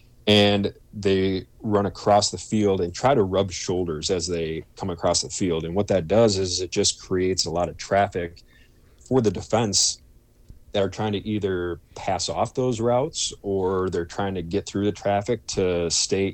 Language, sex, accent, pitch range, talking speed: English, male, American, 85-105 Hz, 185 wpm